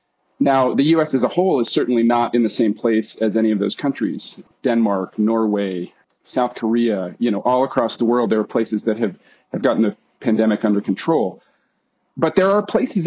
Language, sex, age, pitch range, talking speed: English, male, 40-59, 110-135 Hz, 195 wpm